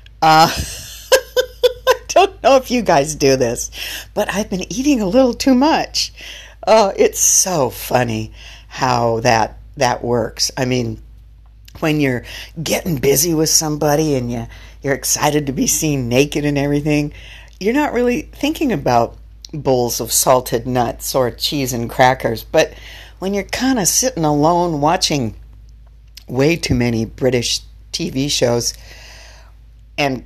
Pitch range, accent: 115-185 Hz, American